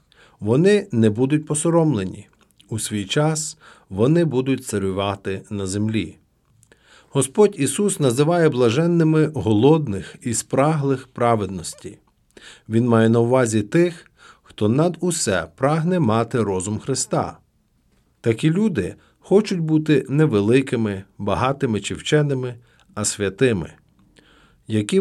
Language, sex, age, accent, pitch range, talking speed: Ukrainian, male, 50-69, native, 105-155 Hz, 105 wpm